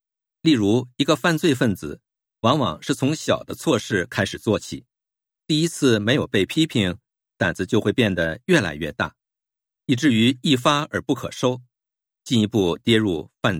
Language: Japanese